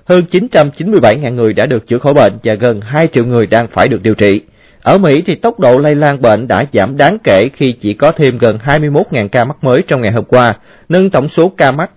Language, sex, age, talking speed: Vietnamese, male, 20-39, 240 wpm